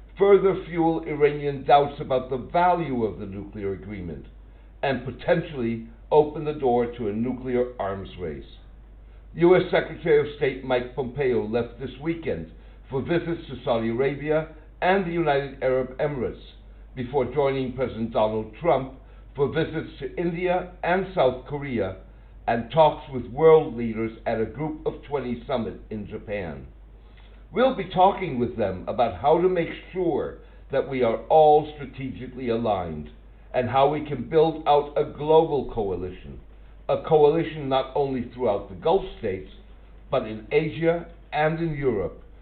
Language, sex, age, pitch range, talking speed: English, male, 60-79, 115-160 Hz, 145 wpm